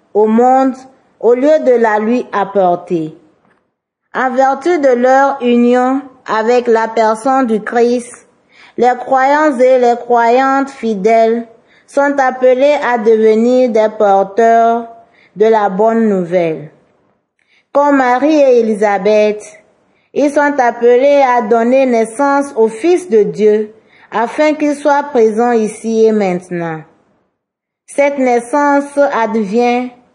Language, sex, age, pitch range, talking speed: French, female, 40-59, 220-265 Hz, 115 wpm